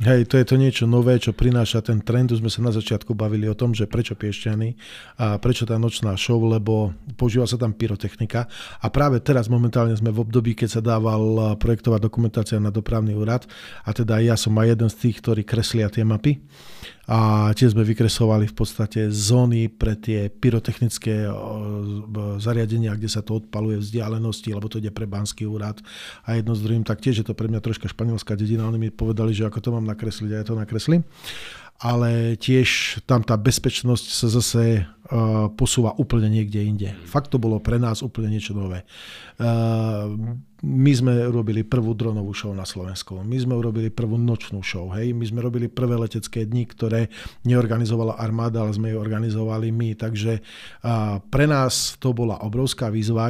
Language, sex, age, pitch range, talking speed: Slovak, male, 40-59, 110-120 Hz, 185 wpm